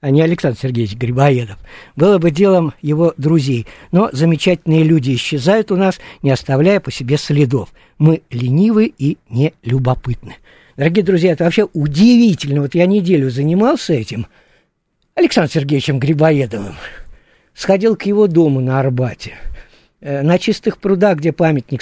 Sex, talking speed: male, 135 wpm